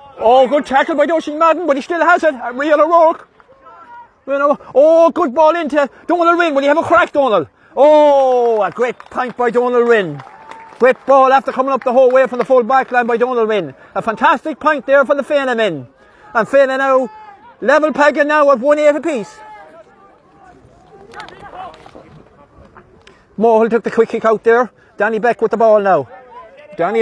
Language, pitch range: English, 250-295 Hz